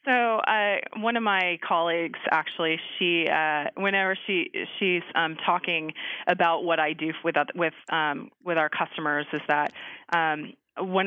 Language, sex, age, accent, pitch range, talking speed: English, female, 30-49, American, 165-210 Hz, 150 wpm